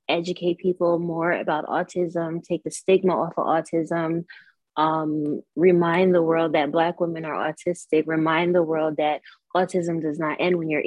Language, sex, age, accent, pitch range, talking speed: English, female, 20-39, American, 150-175 Hz, 165 wpm